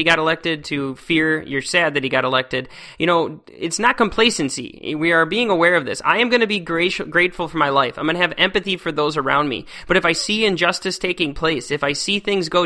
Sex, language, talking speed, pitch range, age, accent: male, English, 245 wpm, 150-205 Hz, 20-39, American